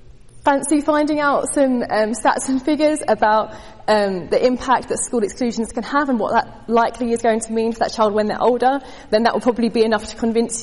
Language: English